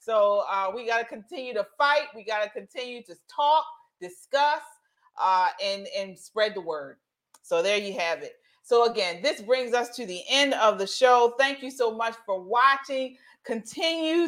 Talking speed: 185 wpm